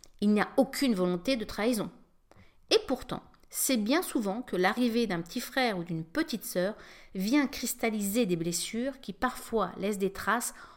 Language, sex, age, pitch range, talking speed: French, female, 50-69, 185-265 Hz, 165 wpm